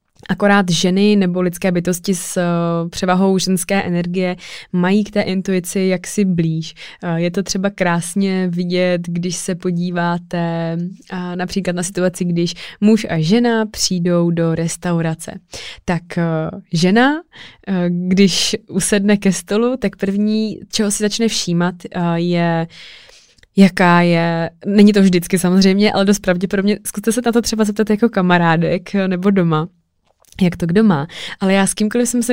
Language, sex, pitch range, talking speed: Czech, female, 175-210 Hz, 140 wpm